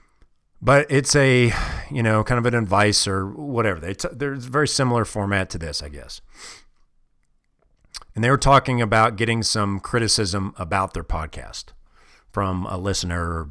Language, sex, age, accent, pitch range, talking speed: English, male, 40-59, American, 95-135 Hz, 160 wpm